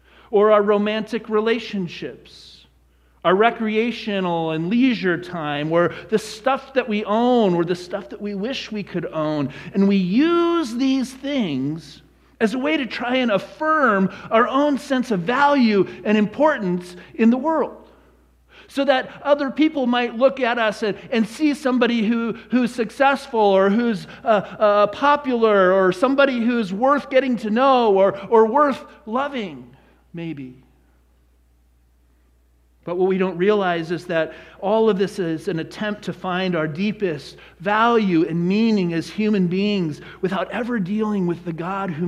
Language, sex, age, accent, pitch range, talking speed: English, male, 40-59, American, 160-230 Hz, 155 wpm